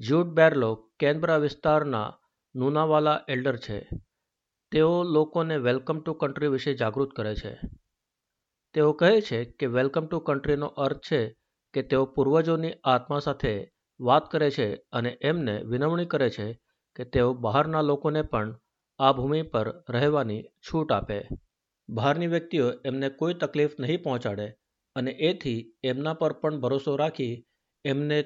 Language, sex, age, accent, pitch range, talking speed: Gujarati, male, 50-69, native, 120-155 Hz, 105 wpm